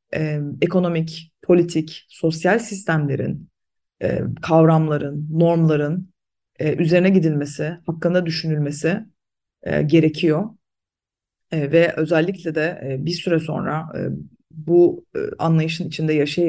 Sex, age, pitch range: female, 30-49, 145-170 Hz